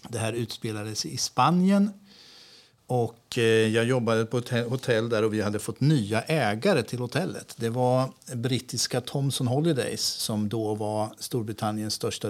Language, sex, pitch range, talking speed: Swedish, male, 110-140 Hz, 150 wpm